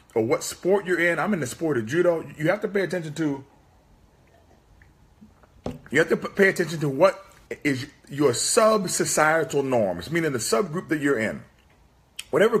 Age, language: 40-59, English